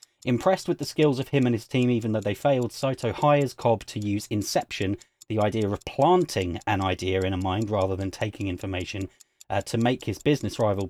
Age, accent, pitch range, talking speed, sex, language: 30-49, British, 110-130 Hz, 210 wpm, male, English